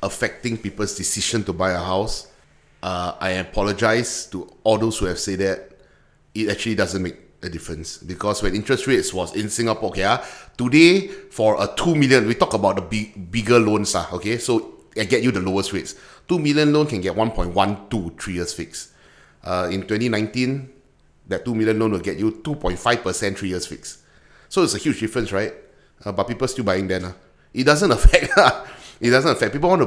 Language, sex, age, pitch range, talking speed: English, male, 30-49, 95-135 Hz, 205 wpm